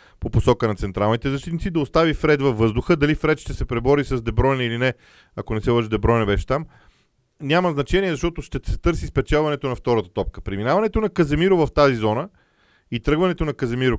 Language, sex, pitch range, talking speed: Bulgarian, male, 110-150 Hz, 195 wpm